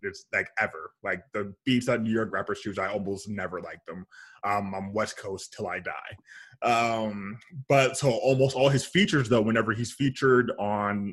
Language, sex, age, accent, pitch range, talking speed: English, male, 20-39, American, 100-135 Hz, 190 wpm